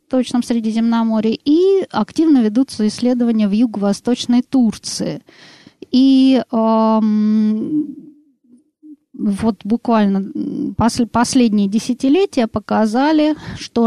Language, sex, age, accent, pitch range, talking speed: Russian, female, 20-39, native, 205-270 Hz, 70 wpm